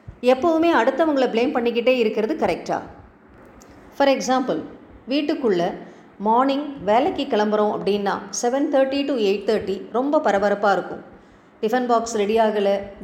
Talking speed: 105 wpm